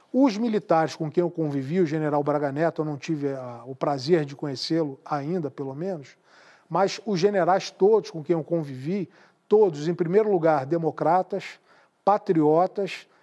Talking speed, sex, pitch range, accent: 155 wpm, male, 165-205 Hz, Brazilian